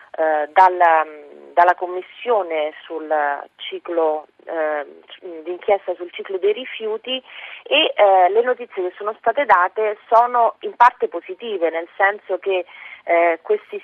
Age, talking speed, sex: 30-49, 100 wpm, female